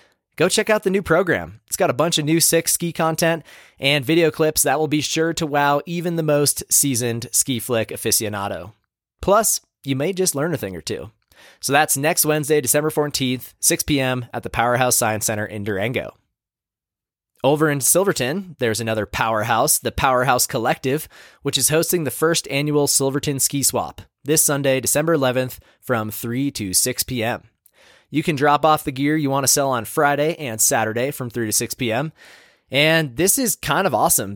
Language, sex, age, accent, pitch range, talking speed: English, male, 20-39, American, 115-150 Hz, 185 wpm